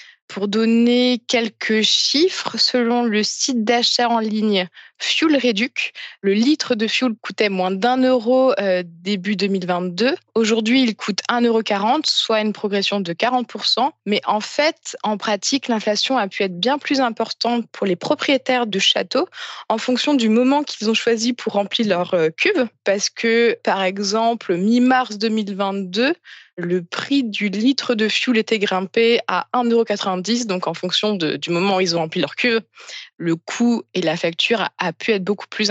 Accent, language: French, French